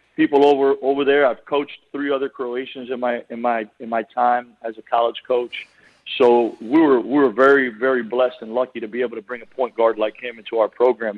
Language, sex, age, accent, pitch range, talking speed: English, male, 40-59, American, 115-135 Hz, 230 wpm